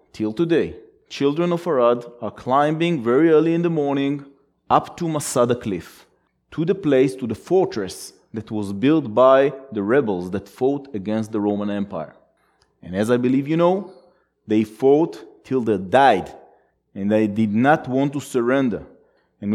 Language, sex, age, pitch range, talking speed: English, male, 30-49, 110-160 Hz, 165 wpm